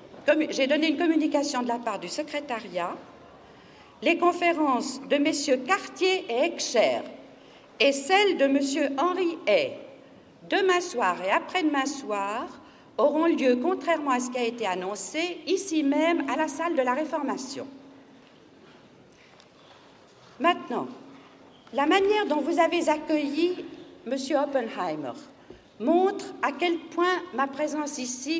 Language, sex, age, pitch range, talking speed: French, female, 60-79, 265-330 Hz, 130 wpm